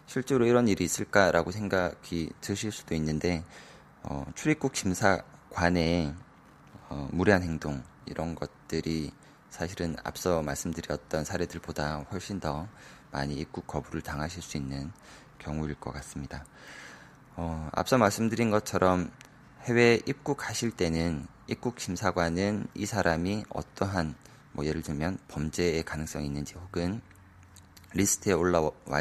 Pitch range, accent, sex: 75-95 Hz, native, male